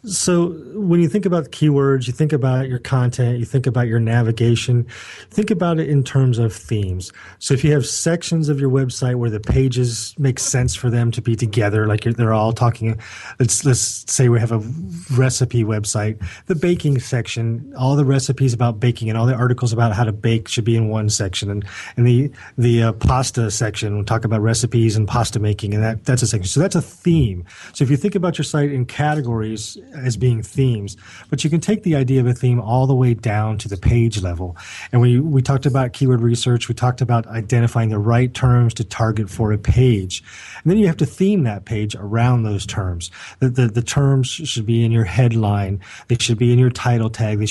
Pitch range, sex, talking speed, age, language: 115-135 Hz, male, 220 wpm, 30-49, English